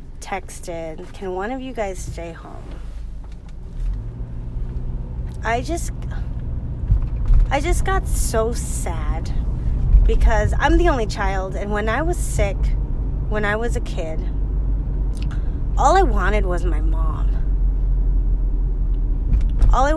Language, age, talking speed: English, 30-49, 115 wpm